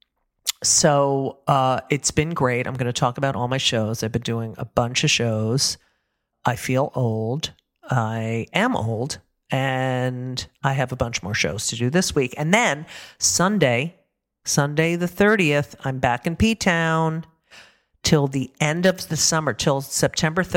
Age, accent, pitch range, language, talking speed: 40-59, American, 125-155 Hz, English, 165 wpm